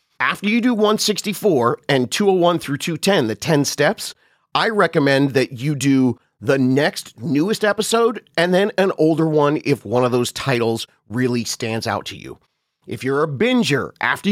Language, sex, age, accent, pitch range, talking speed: English, male, 30-49, American, 125-185 Hz, 170 wpm